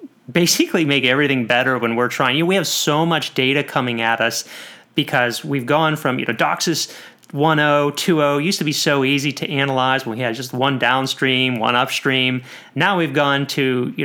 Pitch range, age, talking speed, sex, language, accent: 130-155 Hz, 30-49, 195 wpm, male, English, American